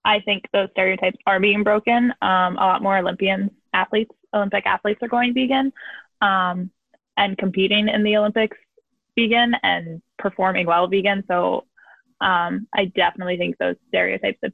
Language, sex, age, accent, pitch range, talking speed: English, female, 10-29, American, 185-220 Hz, 155 wpm